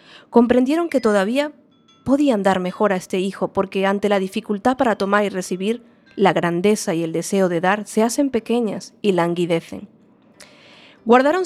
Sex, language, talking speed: female, Spanish, 155 wpm